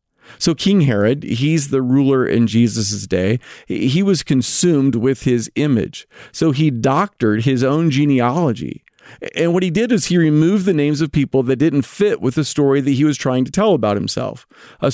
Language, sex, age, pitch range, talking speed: English, male, 40-59, 130-165 Hz, 190 wpm